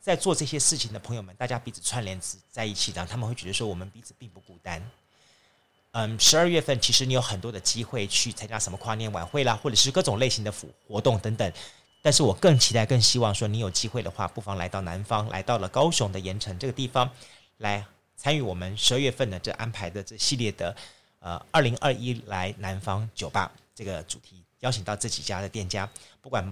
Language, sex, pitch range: Chinese, male, 100-125 Hz